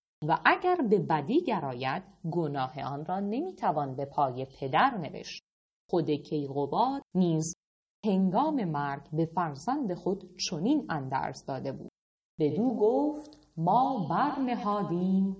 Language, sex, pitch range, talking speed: Persian, female, 160-240 Hz, 115 wpm